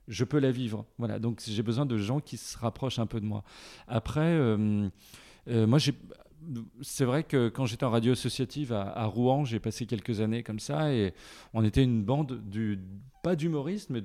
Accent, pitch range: French, 110-135 Hz